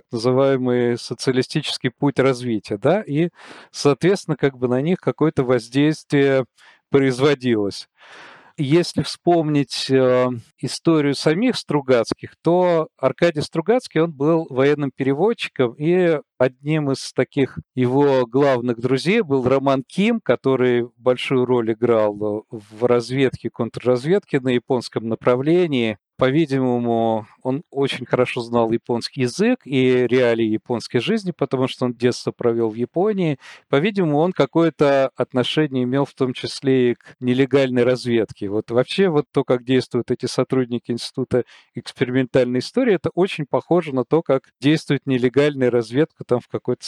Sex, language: male, Russian